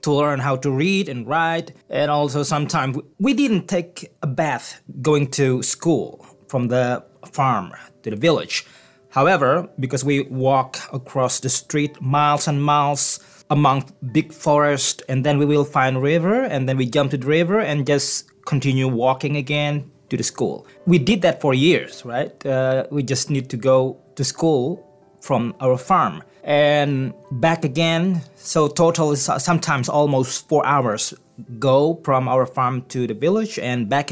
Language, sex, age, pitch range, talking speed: English, male, 20-39, 130-155 Hz, 165 wpm